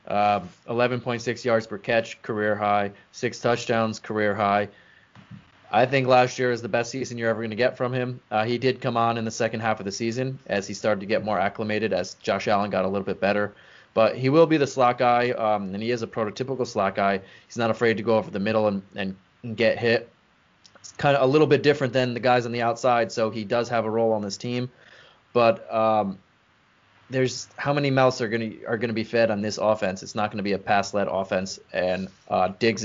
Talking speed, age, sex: 235 wpm, 20-39, male